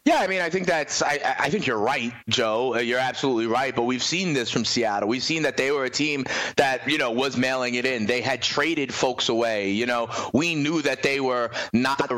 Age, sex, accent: 30-49, male, American